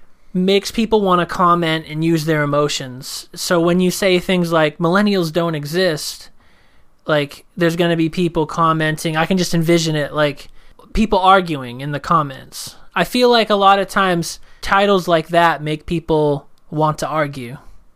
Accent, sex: American, male